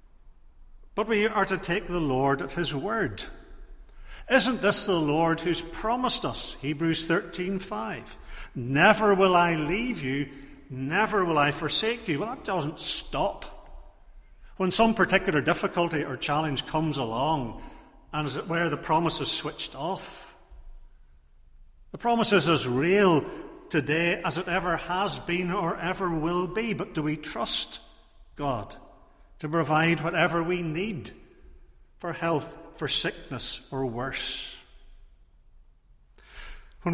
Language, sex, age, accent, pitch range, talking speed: English, male, 50-69, British, 155-200 Hz, 135 wpm